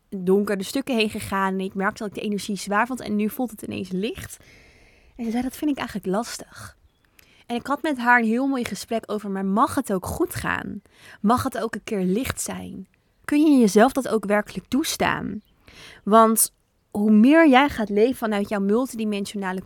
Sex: female